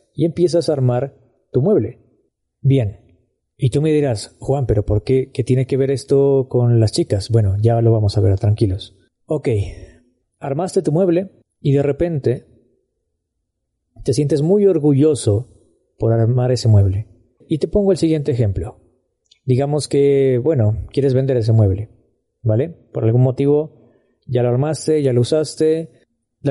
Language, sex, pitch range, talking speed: Spanish, male, 115-150 Hz, 155 wpm